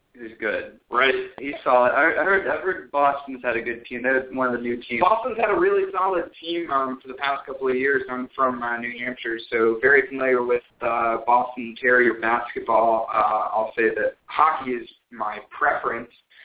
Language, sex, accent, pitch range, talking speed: English, male, American, 115-165 Hz, 195 wpm